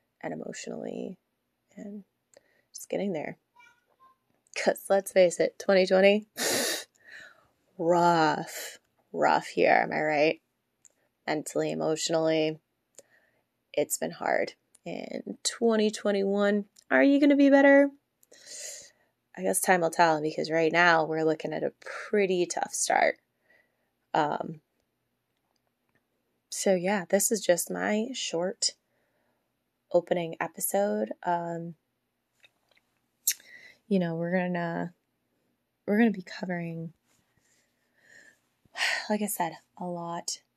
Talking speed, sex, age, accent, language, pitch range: 105 wpm, female, 20-39, American, English, 165-210 Hz